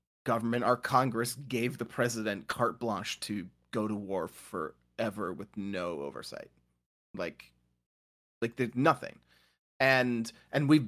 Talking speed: 125 wpm